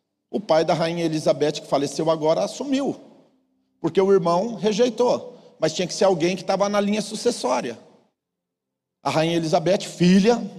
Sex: male